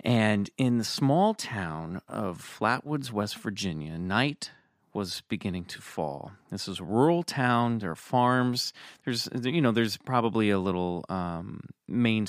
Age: 30-49